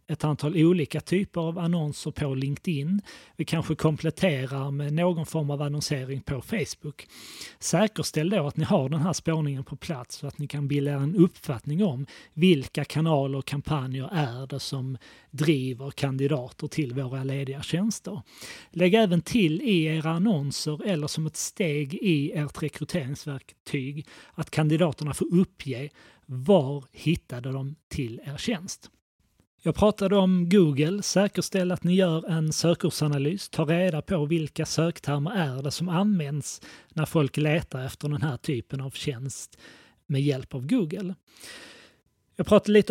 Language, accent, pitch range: Swedish, native, 145-175 Hz